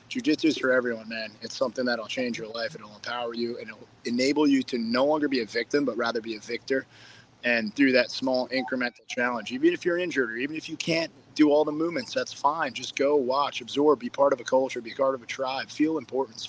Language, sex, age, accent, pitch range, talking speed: English, male, 30-49, American, 120-145 Hz, 250 wpm